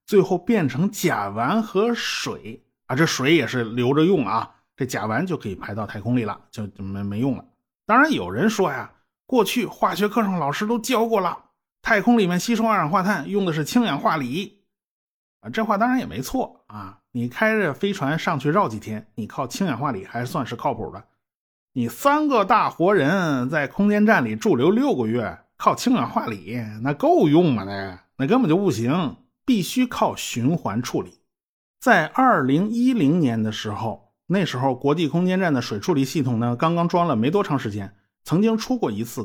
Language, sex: Chinese, male